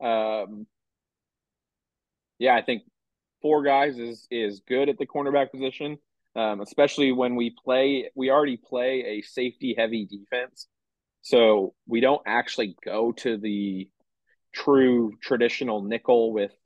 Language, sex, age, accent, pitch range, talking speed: English, male, 30-49, American, 105-130 Hz, 130 wpm